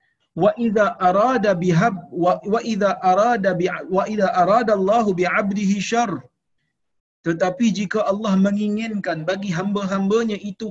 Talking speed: 95 wpm